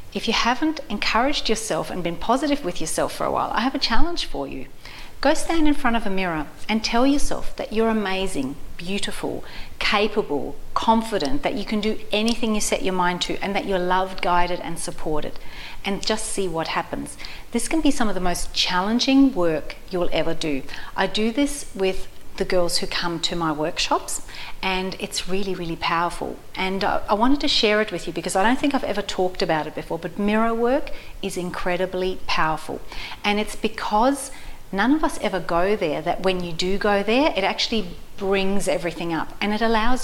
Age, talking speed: 40-59, 200 wpm